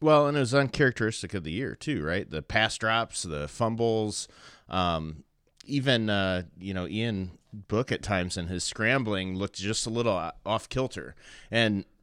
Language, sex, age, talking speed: English, male, 30-49, 170 wpm